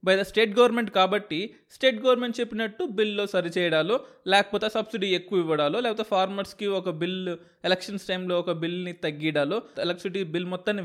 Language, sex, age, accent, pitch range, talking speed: Telugu, male, 20-39, native, 165-210 Hz, 145 wpm